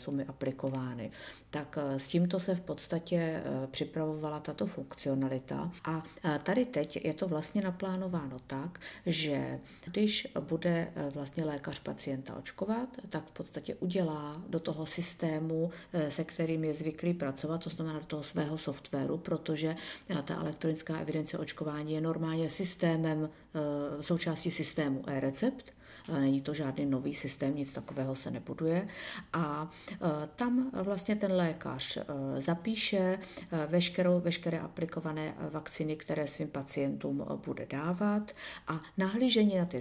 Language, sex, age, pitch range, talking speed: Czech, female, 50-69, 145-170 Hz, 125 wpm